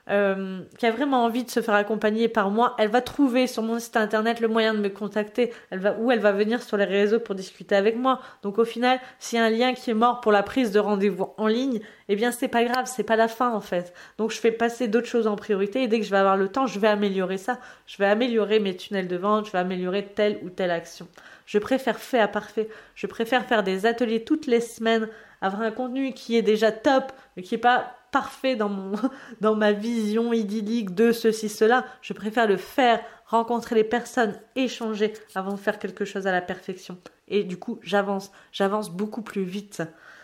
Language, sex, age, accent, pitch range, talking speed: French, female, 20-39, French, 205-240 Hz, 235 wpm